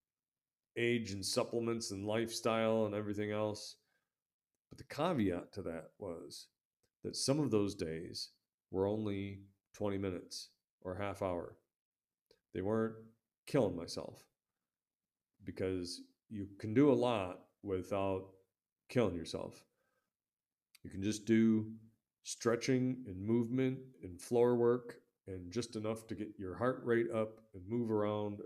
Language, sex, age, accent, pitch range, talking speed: English, male, 40-59, American, 95-120 Hz, 130 wpm